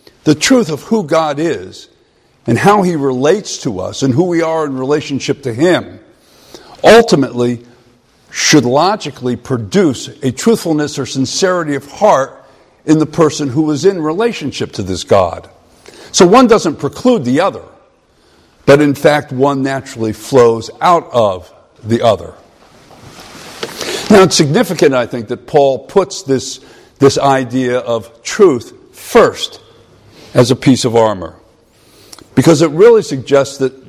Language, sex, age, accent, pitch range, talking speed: English, male, 50-69, American, 130-170 Hz, 140 wpm